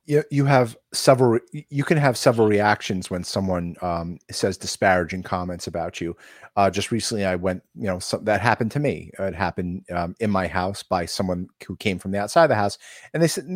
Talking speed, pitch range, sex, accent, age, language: 210 wpm, 95-115 Hz, male, American, 30-49, English